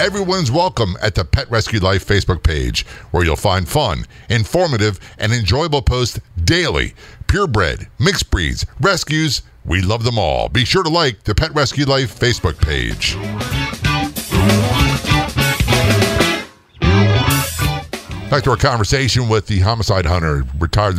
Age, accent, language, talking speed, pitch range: 50-69, American, English, 130 wpm, 85-115 Hz